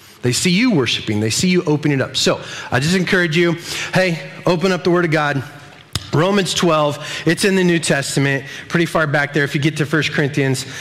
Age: 30-49